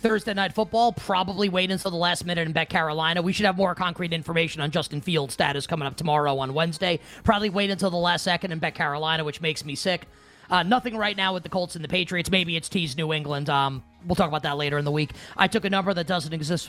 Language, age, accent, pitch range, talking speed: English, 30-49, American, 160-200 Hz, 255 wpm